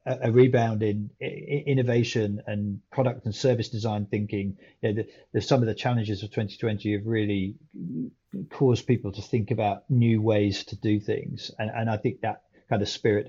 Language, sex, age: English, male, 40-59